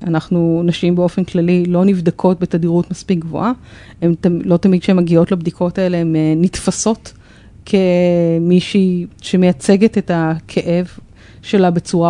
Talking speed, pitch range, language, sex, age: 115 wpm, 165-200 Hz, Hebrew, female, 30-49